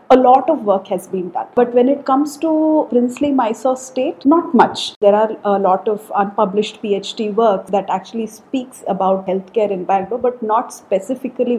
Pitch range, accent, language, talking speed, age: 200-255 Hz, Indian, English, 180 wpm, 40-59